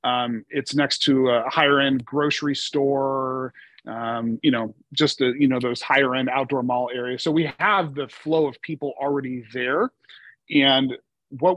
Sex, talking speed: male, 165 wpm